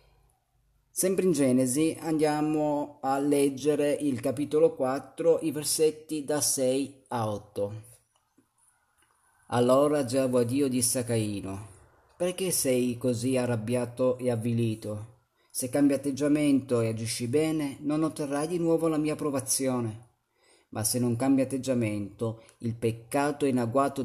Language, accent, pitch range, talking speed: Italian, native, 120-145 Hz, 125 wpm